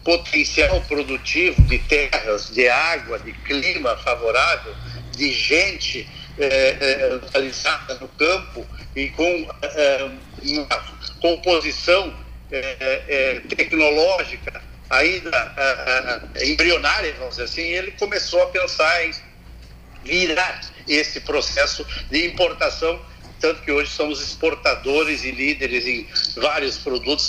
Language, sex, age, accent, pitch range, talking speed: Portuguese, male, 60-79, Brazilian, 135-185 Hz, 110 wpm